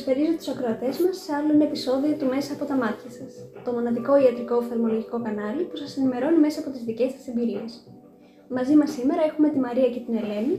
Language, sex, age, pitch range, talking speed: Greek, female, 20-39, 235-290 Hz, 210 wpm